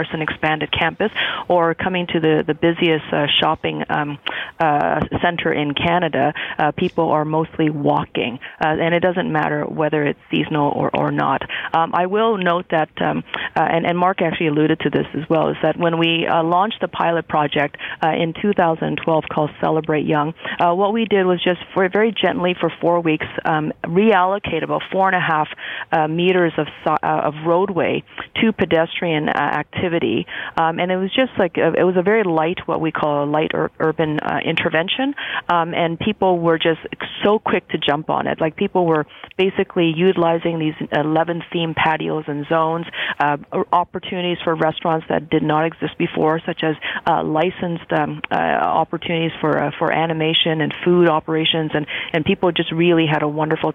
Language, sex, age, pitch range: English, female, 30-49, 155-180 Hz